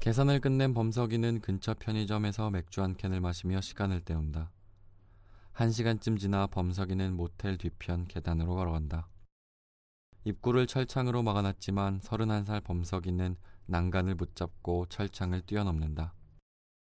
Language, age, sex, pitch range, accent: Korean, 20-39, male, 90-110 Hz, native